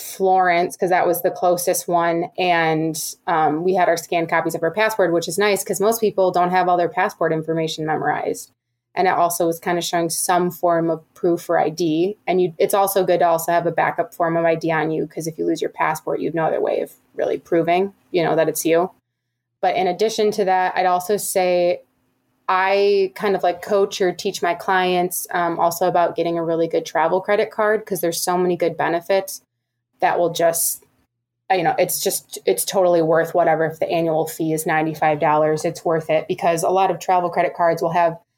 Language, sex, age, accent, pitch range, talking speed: English, female, 20-39, American, 165-185 Hz, 215 wpm